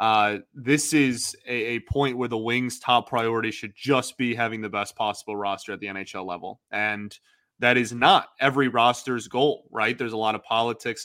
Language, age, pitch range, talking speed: English, 20-39, 115-135 Hz, 195 wpm